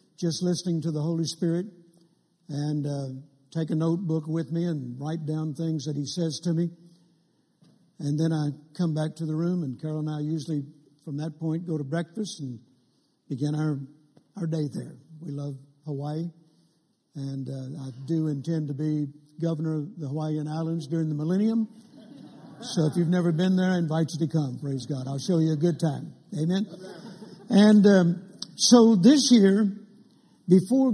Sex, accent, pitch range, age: male, American, 155-190 Hz, 60-79